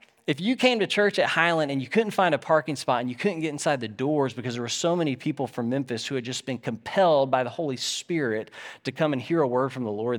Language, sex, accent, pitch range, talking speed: English, male, American, 130-210 Hz, 275 wpm